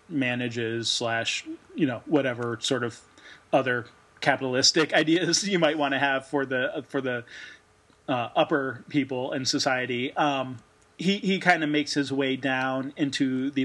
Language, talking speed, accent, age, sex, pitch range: English, 155 wpm, American, 30-49, male, 130-150 Hz